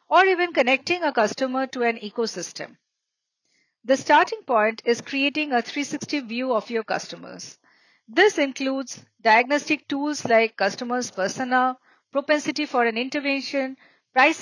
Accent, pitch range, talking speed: Indian, 230-295 Hz, 130 wpm